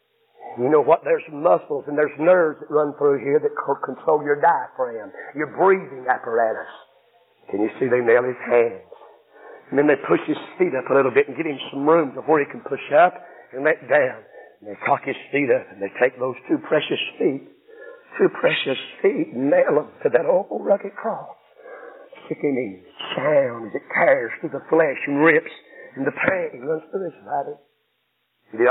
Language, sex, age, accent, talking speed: English, male, 50-69, American, 195 wpm